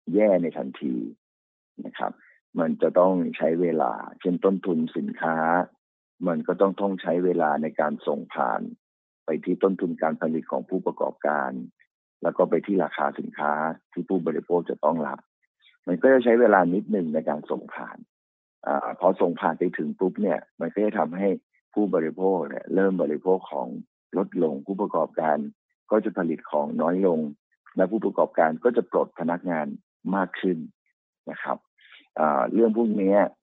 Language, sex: Thai, male